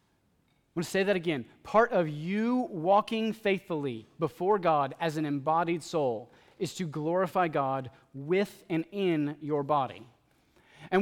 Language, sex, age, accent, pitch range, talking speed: English, male, 30-49, American, 165-220 Hz, 145 wpm